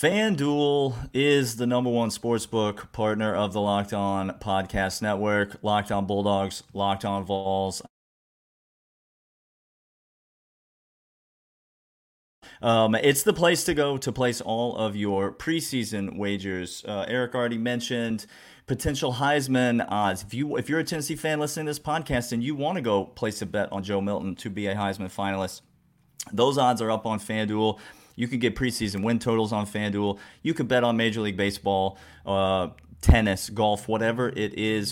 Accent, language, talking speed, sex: American, English, 160 wpm, male